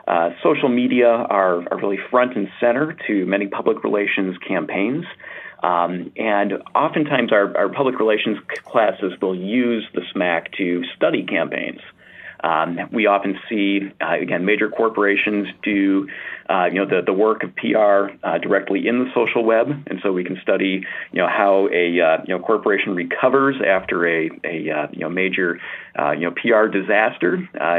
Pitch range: 95-120 Hz